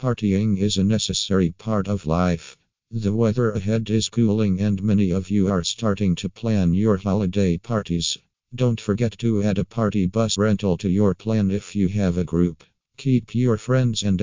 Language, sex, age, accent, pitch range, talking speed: English, male, 50-69, American, 95-110 Hz, 180 wpm